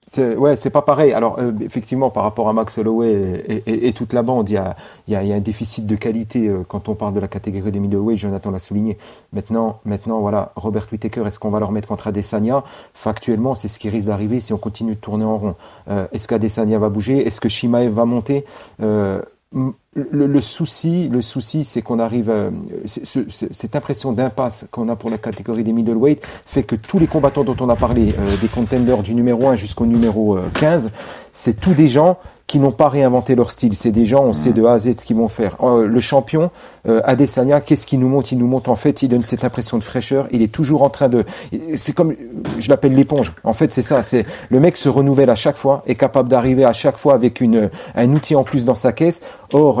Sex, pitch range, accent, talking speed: male, 110-135 Hz, French, 245 wpm